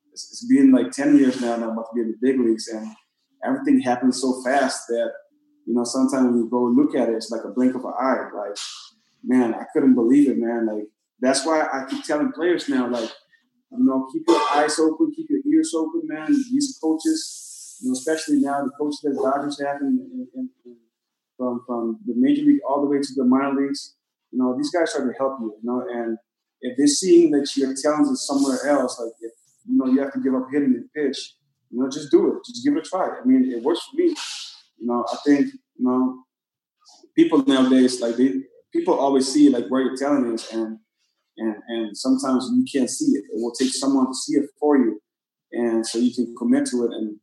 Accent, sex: American, male